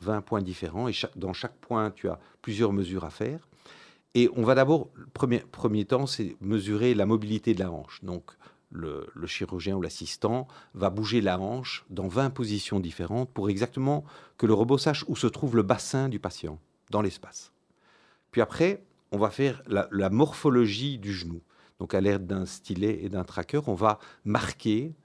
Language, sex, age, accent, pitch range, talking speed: French, male, 50-69, French, 95-125 Hz, 190 wpm